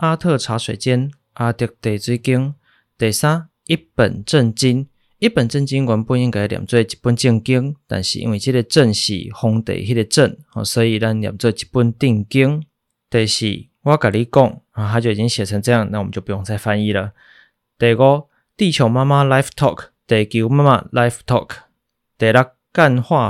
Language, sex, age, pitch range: Chinese, male, 20-39, 110-135 Hz